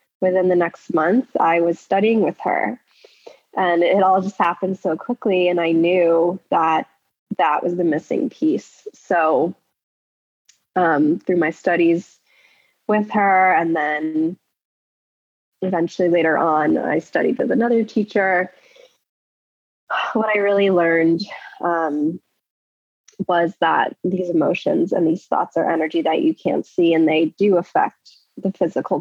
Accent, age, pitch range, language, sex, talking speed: American, 20-39, 165-200 Hz, English, female, 135 wpm